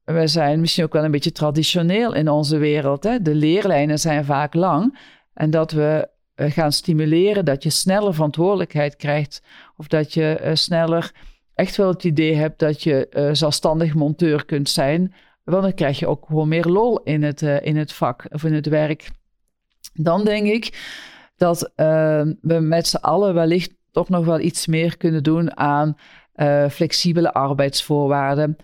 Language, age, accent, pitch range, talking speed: Dutch, 50-69, Dutch, 150-175 Hz, 170 wpm